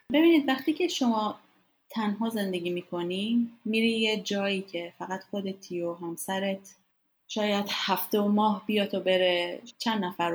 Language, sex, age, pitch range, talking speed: English, female, 30-49, 175-240 Hz, 140 wpm